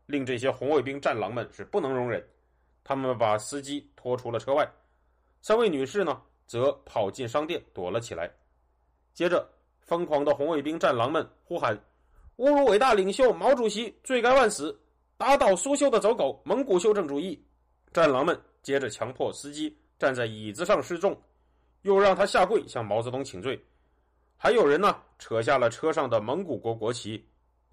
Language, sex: Chinese, male